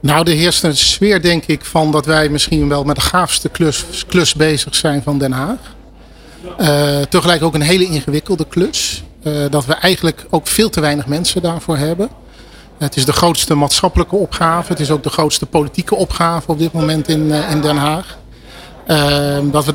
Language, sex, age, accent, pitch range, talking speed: Dutch, male, 40-59, Dutch, 150-175 Hz, 195 wpm